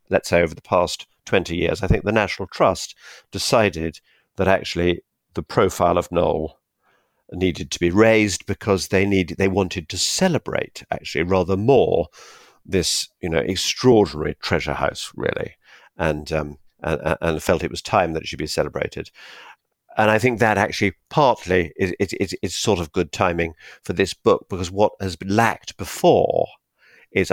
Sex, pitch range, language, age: male, 85-110 Hz, English, 50-69